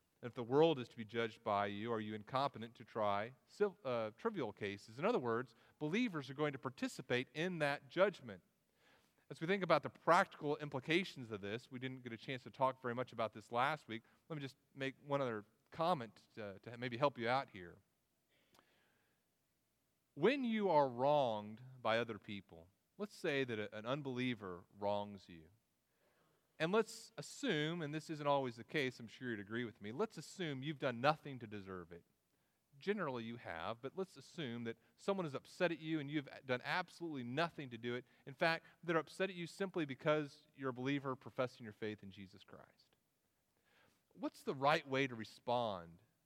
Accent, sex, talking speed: American, male, 185 wpm